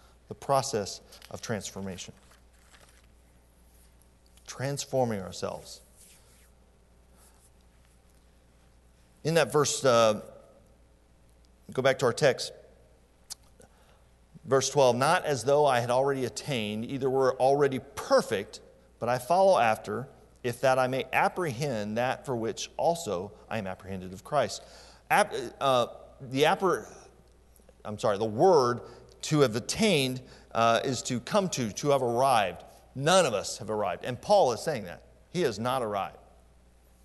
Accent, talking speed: American, 125 wpm